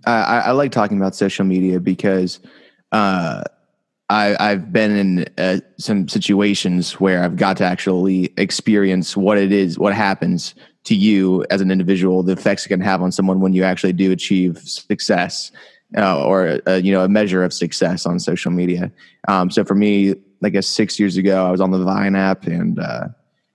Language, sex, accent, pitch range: English, male, American, 95-105 Hz